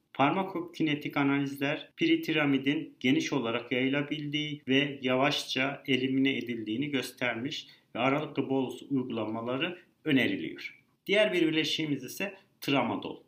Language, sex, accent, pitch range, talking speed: Turkish, male, native, 130-150 Hz, 95 wpm